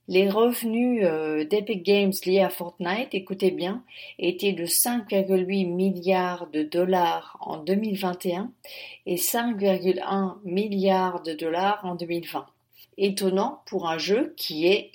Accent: French